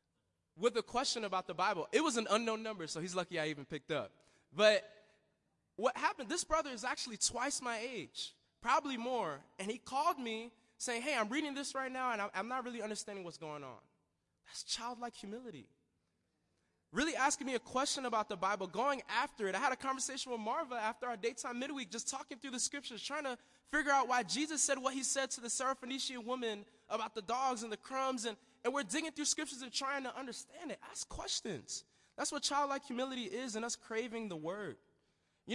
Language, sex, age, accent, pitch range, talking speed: English, male, 20-39, American, 220-285 Hz, 205 wpm